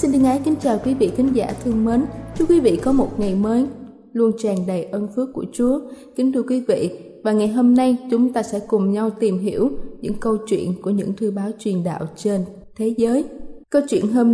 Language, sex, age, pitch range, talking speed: Vietnamese, female, 20-39, 210-260 Hz, 230 wpm